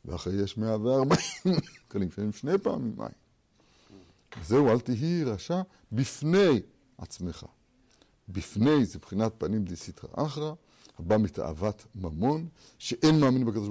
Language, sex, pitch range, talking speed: Hebrew, male, 100-140 Hz, 115 wpm